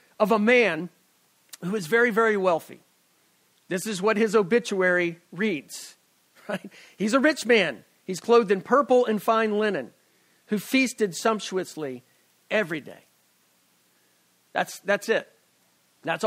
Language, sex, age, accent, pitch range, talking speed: English, male, 50-69, American, 165-215 Hz, 130 wpm